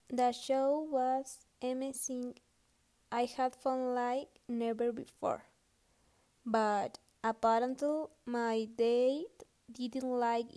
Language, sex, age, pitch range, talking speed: English, female, 20-39, 235-270 Hz, 90 wpm